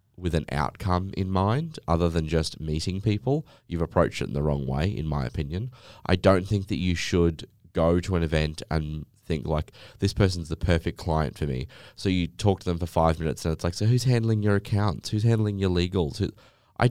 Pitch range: 80-105 Hz